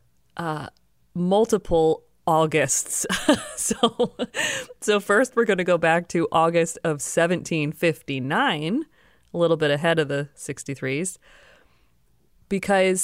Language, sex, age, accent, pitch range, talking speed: English, female, 30-49, American, 145-180 Hz, 105 wpm